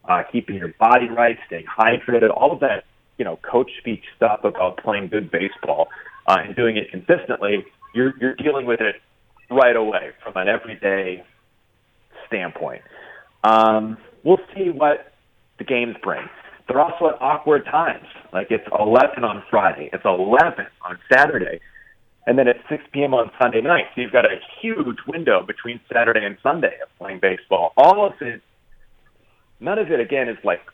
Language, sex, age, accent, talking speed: English, male, 30-49, American, 170 wpm